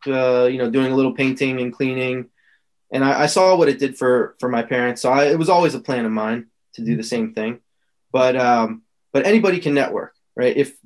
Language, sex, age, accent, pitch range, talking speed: English, male, 20-39, American, 125-155 Hz, 230 wpm